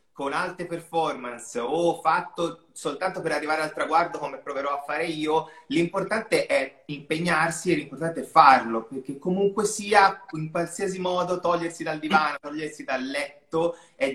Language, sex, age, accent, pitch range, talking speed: Italian, male, 30-49, native, 130-170 Hz, 150 wpm